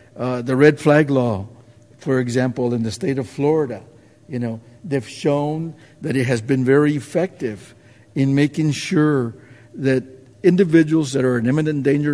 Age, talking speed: 50-69, 160 wpm